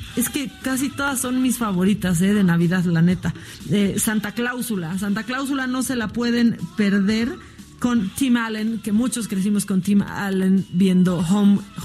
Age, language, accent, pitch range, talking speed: 30-49, Spanish, Mexican, 185-260 Hz, 165 wpm